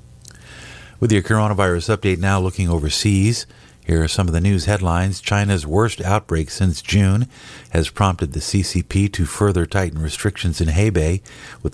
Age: 50-69